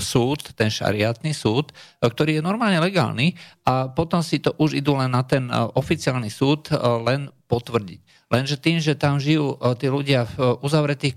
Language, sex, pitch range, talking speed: Slovak, male, 120-145 Hz, 160 wpm